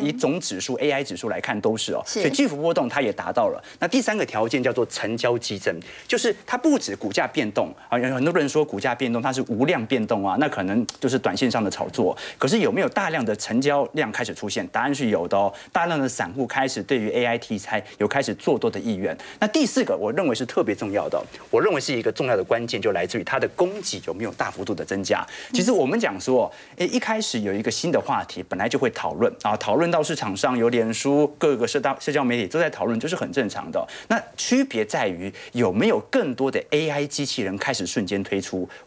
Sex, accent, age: male, native, 30-49